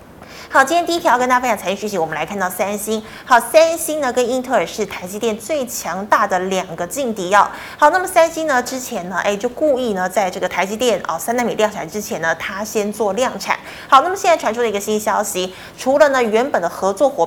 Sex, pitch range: female, 205-275 Hz